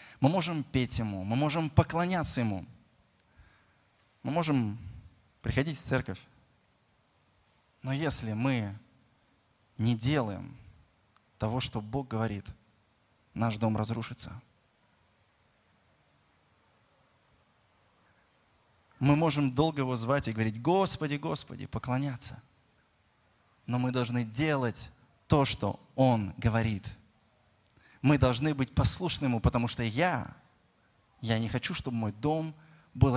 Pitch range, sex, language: 110-140 Hz, male, Russian